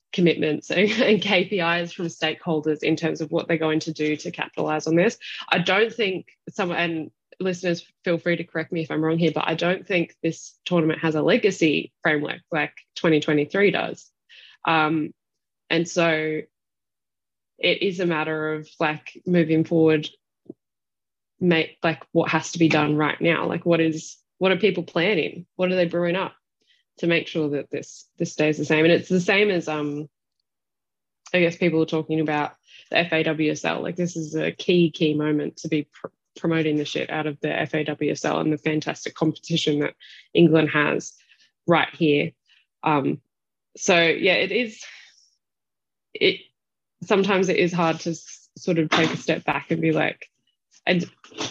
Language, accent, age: English, Australian, 20-39